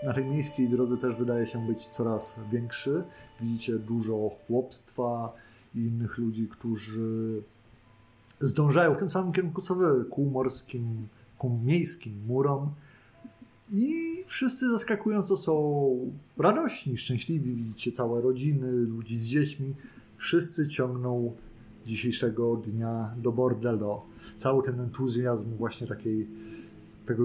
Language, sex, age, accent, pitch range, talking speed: Polish, male, 20-39, native, 115-130 Hz, 115 wpm